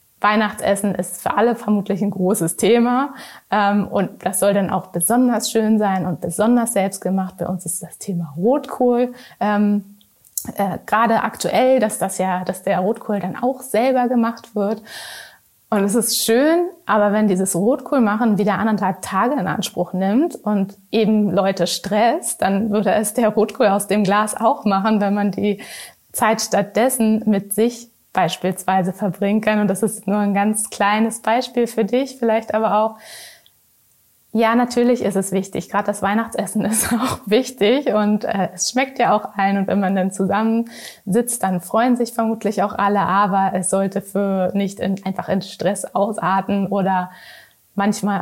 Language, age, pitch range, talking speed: German, 20-39, 195-225 Hz, 165 wpm